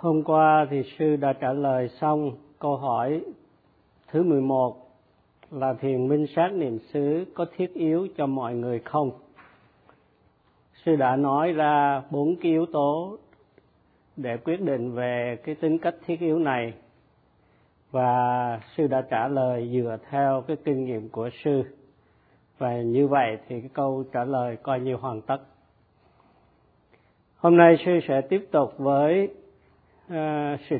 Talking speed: 145 wpm